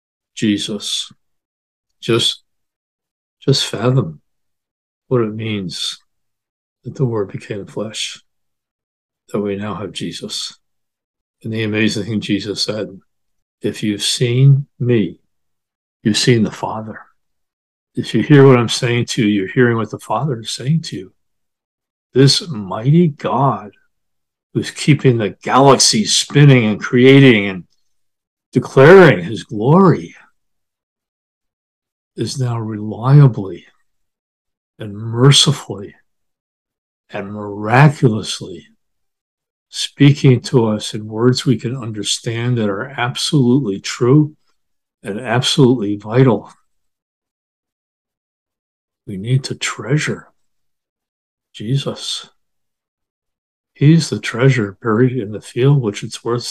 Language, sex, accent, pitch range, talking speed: English, male, American, 105-135 Hz, 105 wpm